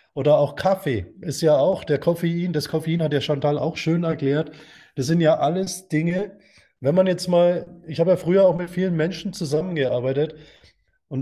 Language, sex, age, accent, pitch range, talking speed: German, male, 20-39, German, 140-190 Hz, 195 wpm